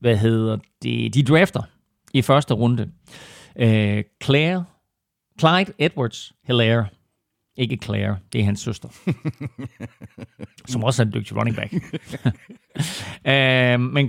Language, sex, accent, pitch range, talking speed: Danish, male, native, 115-140 Hz, 115 wpm